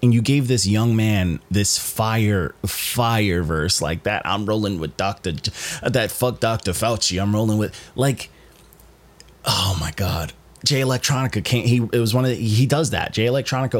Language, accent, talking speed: English, American, 185 wpm